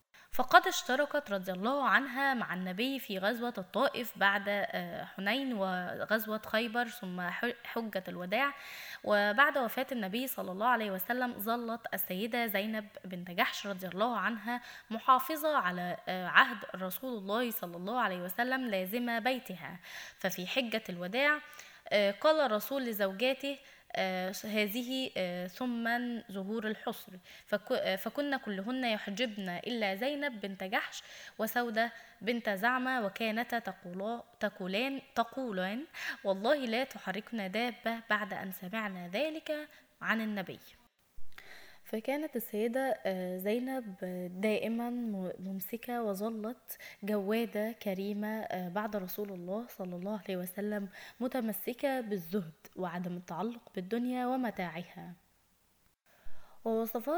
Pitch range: 195-255 Hz